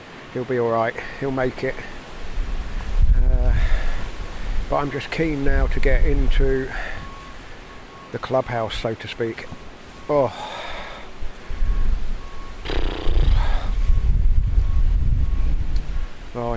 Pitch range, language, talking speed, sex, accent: 90-130 Hz, English, 85 wpm, male, British